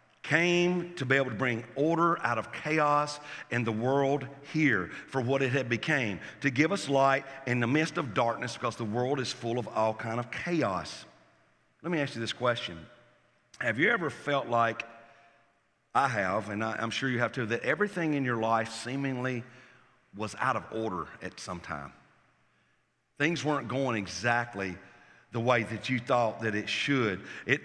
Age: 50-69